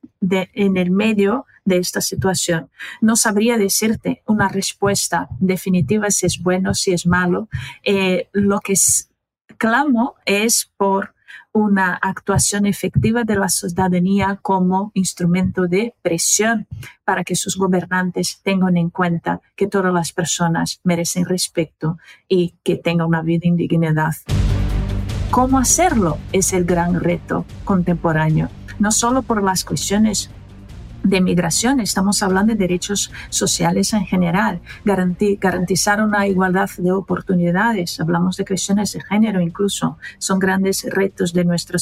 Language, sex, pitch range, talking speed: Spanish, female, 180-225 Hz, 135 wpm